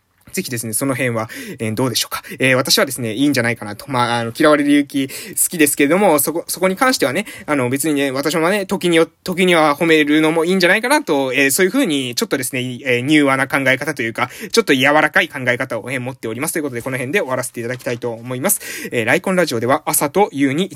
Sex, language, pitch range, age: male, Japanese, 125-170 Hz, 20-39